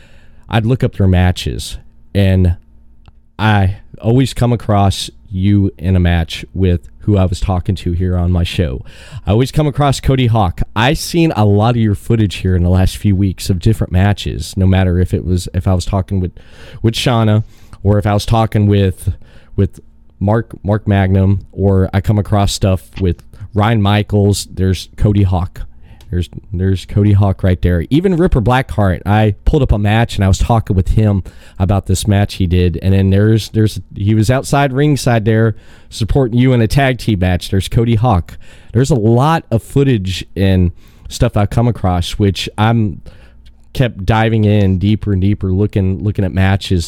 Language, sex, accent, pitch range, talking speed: English, male, American, 90-110 Hz, 185 wpm